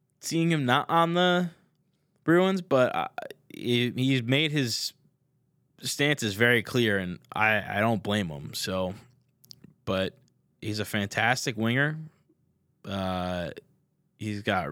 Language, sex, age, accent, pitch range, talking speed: English, male, 20-39, American, 105-145 Hz, 115 wpm